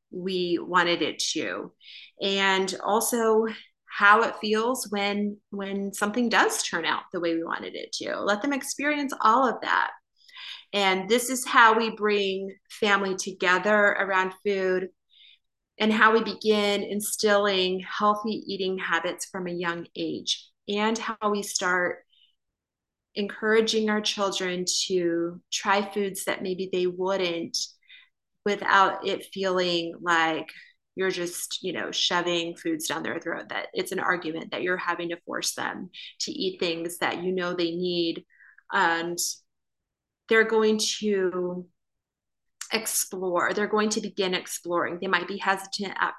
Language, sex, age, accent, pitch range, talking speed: English, female, 30-49, American, 180-215 Hz, 140 wpm